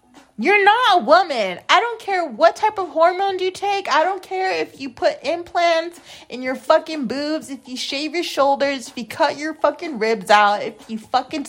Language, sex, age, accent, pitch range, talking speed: English, female, 30-49, American, 200-305 Hz, 205 wpm